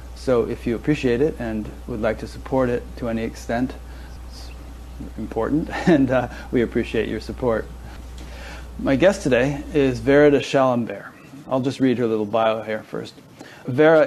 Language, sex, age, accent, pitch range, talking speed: English, male, 40-59, American, 110-130 Hz, 160 wpm